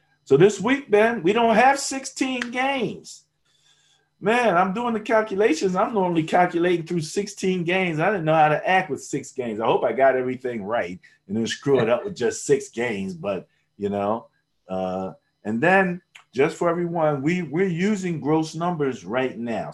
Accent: American